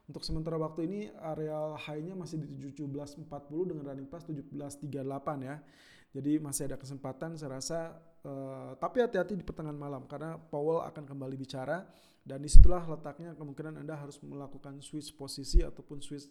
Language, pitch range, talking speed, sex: Indonesian, 140-165 Hz, 155 wpm, male